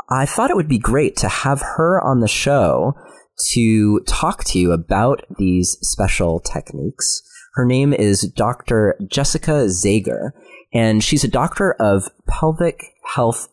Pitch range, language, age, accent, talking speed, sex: 95-135 Hz, English, 30-49, American, 145 wpm, male